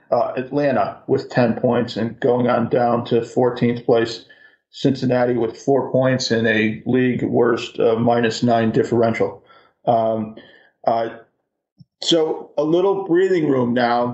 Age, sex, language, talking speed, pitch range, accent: 40-59, male, English, 135 wpm, 120-140 Hz, American